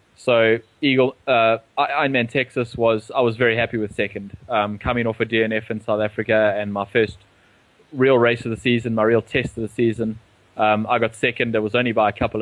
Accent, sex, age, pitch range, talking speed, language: Australian, male, 20-39, 110-130 Hz, 215 wpm, English